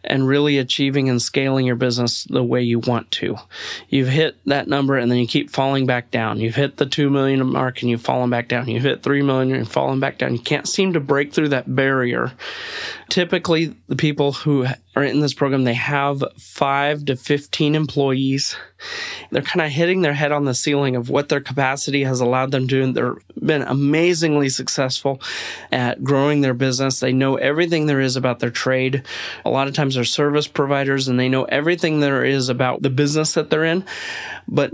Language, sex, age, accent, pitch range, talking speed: English, male, 30-49, American, 130-145 Hz, 205 wpm